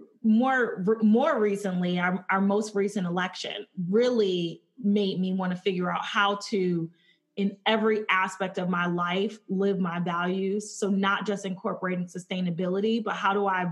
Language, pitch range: English, 180-210 Hz